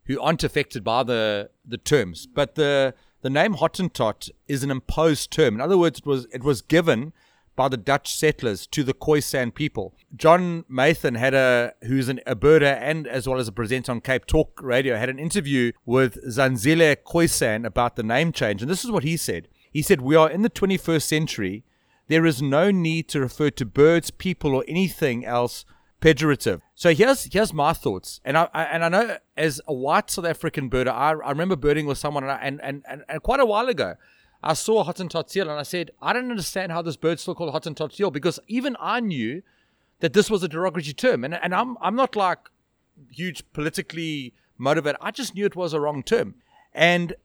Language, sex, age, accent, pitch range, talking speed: English, male, 30-49, South African, 135-185 Hz, 215 wpm